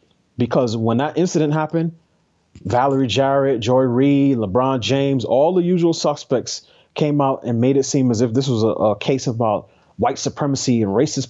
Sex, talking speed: male, 175 wpm